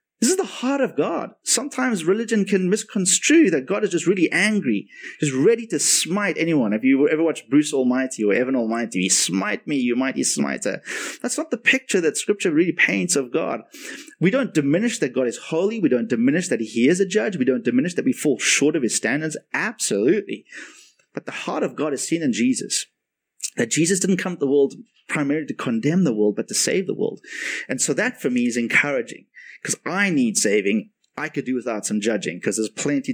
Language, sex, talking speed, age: English, male, 215 wpm, 30-49